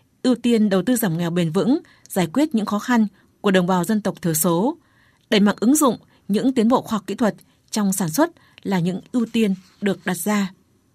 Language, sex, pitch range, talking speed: Vietnamese, female, 190-245 Hz, 225 wpm